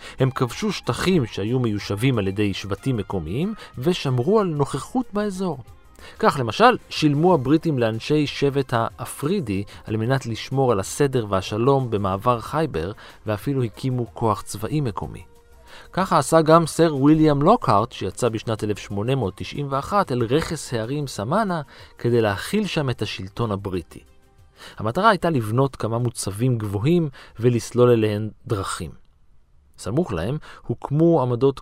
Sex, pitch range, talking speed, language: male, 100-145 Hz, 125 wpm, Hebrew